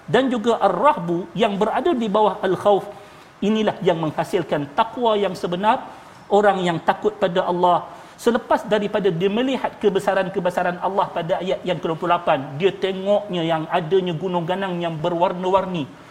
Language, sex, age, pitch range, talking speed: Malayalam, male, 40-59, 150-200 Hz, 135 wpm